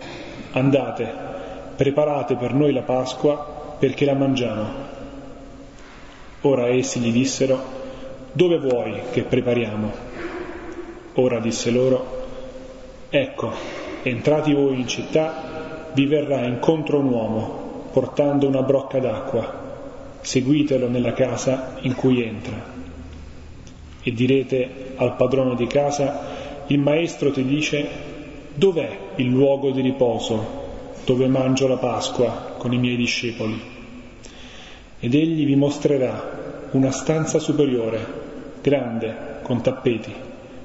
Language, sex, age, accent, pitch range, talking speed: Italian, male, 30-49, native, 125-145 Hz, 110 wpm